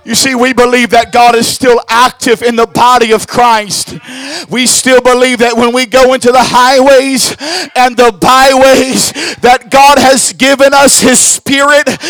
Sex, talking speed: male, 170 wpm